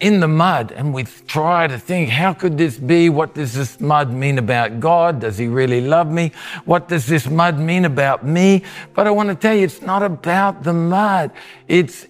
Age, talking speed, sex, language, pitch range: 50-69, 210 wpm, male, English, 140-185 Hz